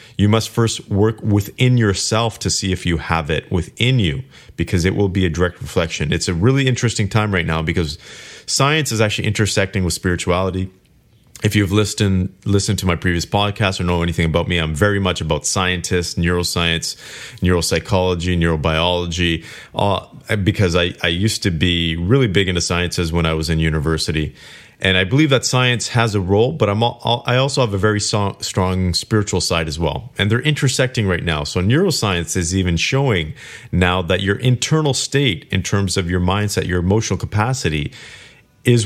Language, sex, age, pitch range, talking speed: English, male, 30-49, 90-120 Hz, 180 wpm